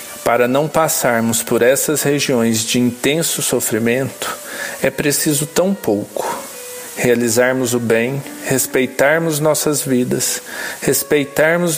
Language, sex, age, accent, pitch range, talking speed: Portuguese, male, 50-69, Brazilian, 130-155 Hz, 100 wpm